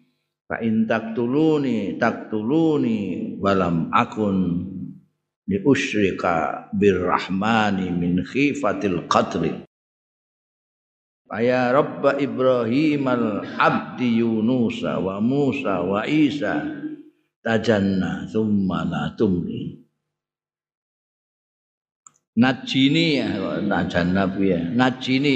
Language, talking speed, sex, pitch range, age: Indonesian, 65 wpm, male, 105-135 Hz, 50-69